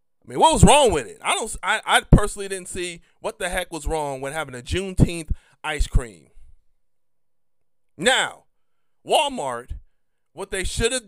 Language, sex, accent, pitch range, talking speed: English, male, American, 165-225 Hz, 170 wpm